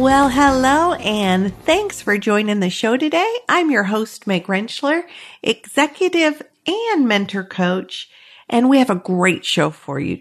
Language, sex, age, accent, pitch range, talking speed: English, female, 50-69, American, 190-270 Hz, 155 wpm